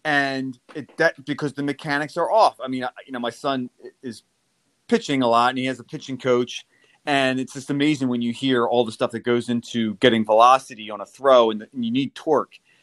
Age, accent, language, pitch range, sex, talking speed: 30-49, American, English, 125-165 Hz, male, 230 wpm